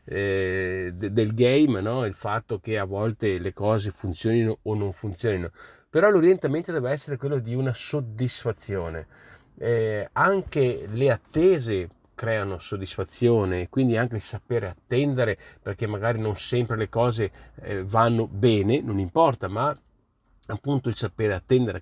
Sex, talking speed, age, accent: male, 135 wpm, 40-59, native